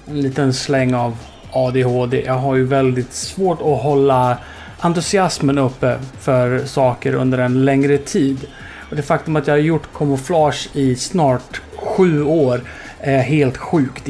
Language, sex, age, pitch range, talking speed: Swedish, male, 30-49, 130-150 Hz, 150 wpm